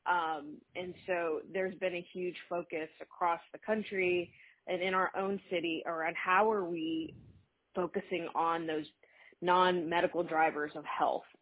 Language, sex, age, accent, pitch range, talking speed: English, female, 20-39, American, 160-185 Hz, 140 wpm